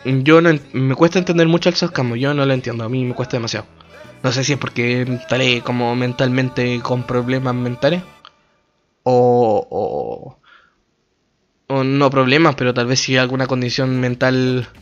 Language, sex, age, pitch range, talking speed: Spanish, male, 20-39, 125-160 Hz, 170 wpm